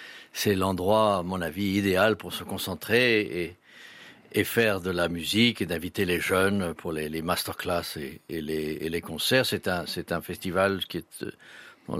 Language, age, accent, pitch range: French, 60-79, French, 90-110 Hz